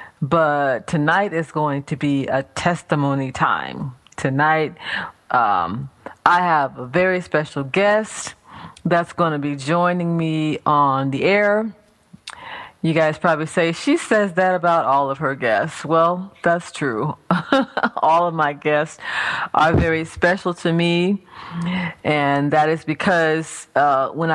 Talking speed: 140 wpm